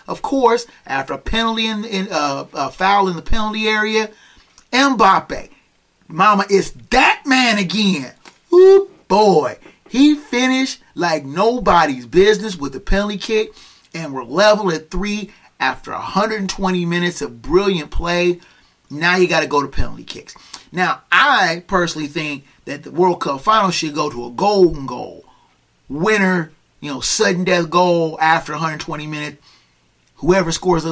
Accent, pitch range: American, 155-215 Hz